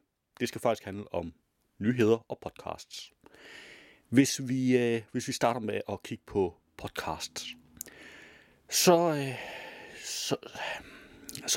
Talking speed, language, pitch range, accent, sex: 100 wpm, Danish, 90-135 Hz, native, male